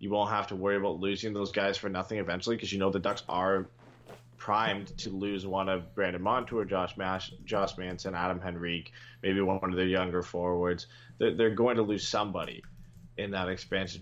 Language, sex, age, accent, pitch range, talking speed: English, male, 20-39, American, 95-115 Hz, 195 wpm